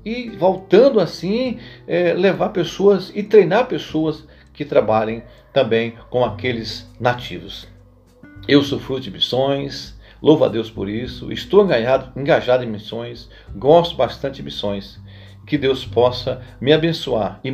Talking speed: 135 wpm